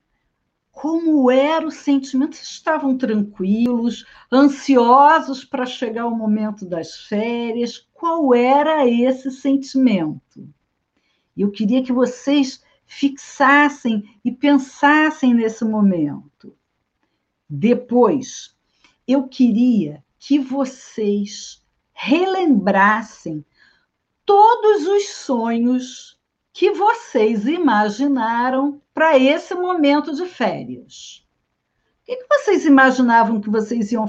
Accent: Brazilian